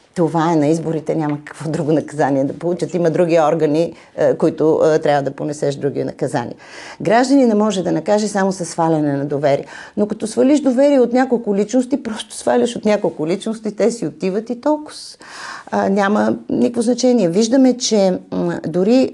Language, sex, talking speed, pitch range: Bulgarian, female, 170 wpm, 165-235 Hz